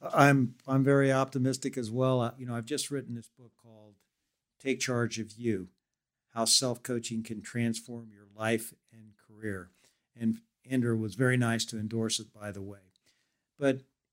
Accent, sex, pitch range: American, male, 110-135 Hz